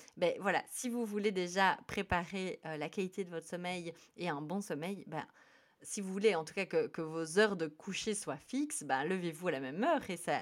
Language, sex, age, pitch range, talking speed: French, female, 30-49, 160-200 Hz, 230 wpm